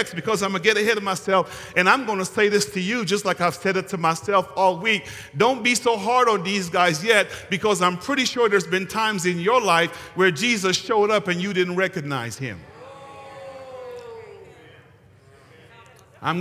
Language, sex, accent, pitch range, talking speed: English, male, American, 175-235 Hz, 185 wpm